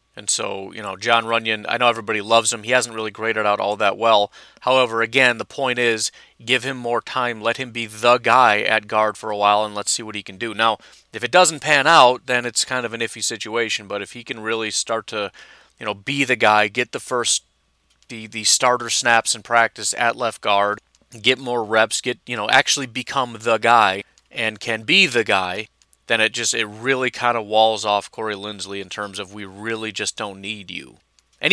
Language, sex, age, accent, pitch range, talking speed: English, male, 30-49, American, 100-120 Hz, 225 wpm